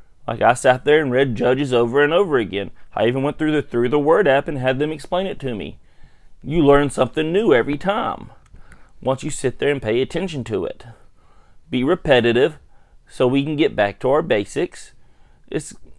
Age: 30-49